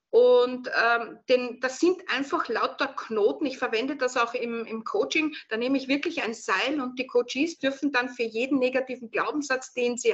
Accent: Austrian